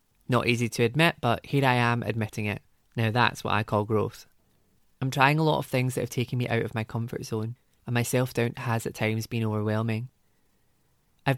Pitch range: 110-130 Hz